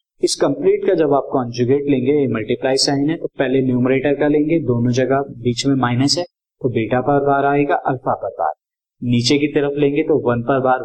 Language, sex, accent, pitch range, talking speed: Hindi, male, native, 120-150 Hz, 205 wpm